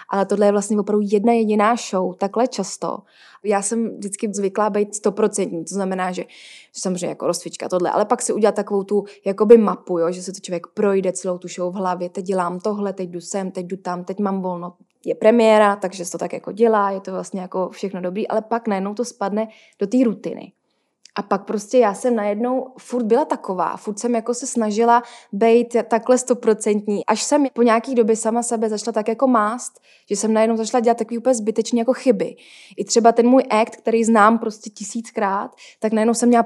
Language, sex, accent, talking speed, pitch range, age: Czech, female, native, 210 wpm, 190-230 Hz, 20-39